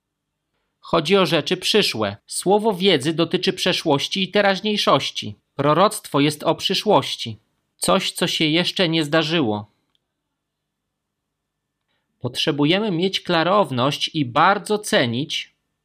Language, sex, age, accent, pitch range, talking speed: Polish, male, 40-59, native, 140-190 Hz, 100 wpm